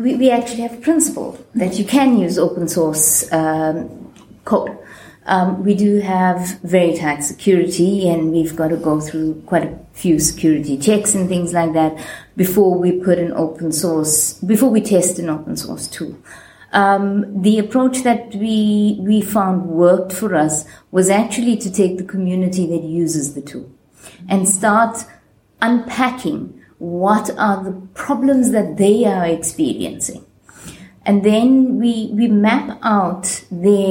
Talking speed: 150 wpm